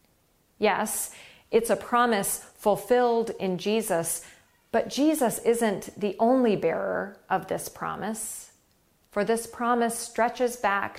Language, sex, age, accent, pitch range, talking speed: English, female, 40-59, American, 195-235 Hz, 115 wpm